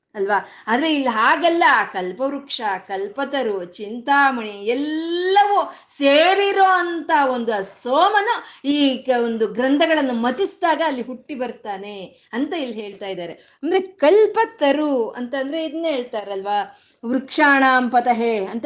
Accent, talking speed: native, 105 wpm